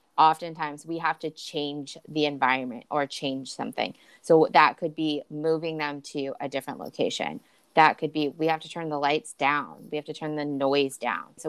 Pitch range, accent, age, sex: 150-175 Hz, American, 20-39, female